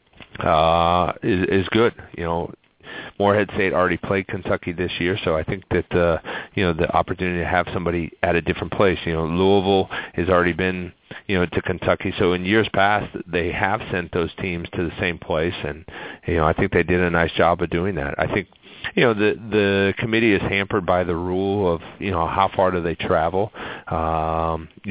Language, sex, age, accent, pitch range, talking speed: English, male, 40-59, American, 85-100 Hz, 205 wpm